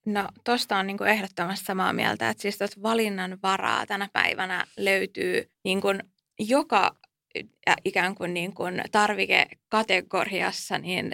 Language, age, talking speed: Finnish, 20-39, 130 wpm